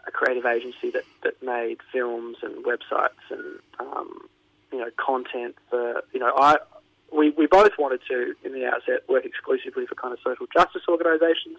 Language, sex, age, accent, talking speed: English, male, 30-49, Australian, 175 wpm